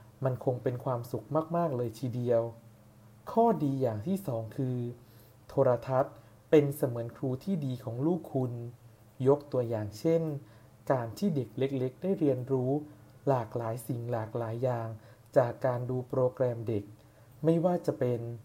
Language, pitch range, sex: English, 120-145 Hz, male